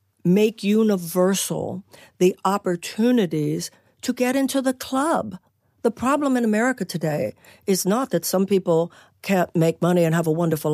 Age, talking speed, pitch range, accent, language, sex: 60-79, 145 wpm, 175-245 Hz, American, English, female